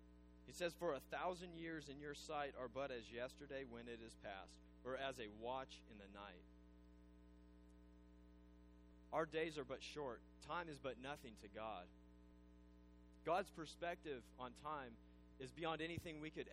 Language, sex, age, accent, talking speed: English, male, 30-49, American, 160 wpm